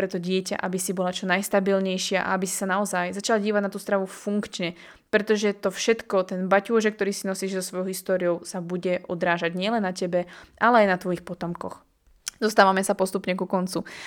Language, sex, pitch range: Slovak, female, 185-210 Hz